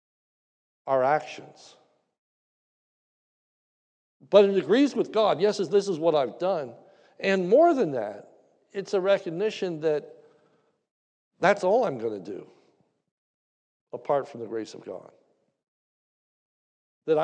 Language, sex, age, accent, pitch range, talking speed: English, male, 60-79, American, 135-195 Hz, 120 wpm